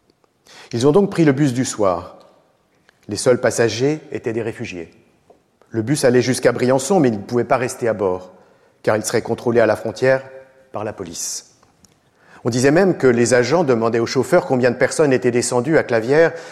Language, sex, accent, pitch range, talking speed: French, male, French, 110-135 Hz, 195 wpm